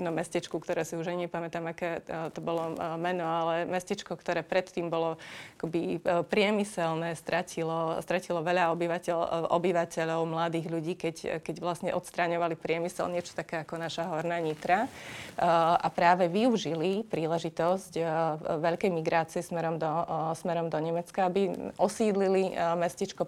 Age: 30-49